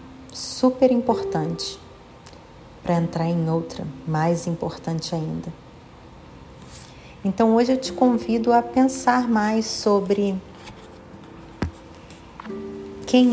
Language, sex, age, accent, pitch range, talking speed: Portuguese, female, 40-59, Brazilian, 170-220 Hz, 85 wpm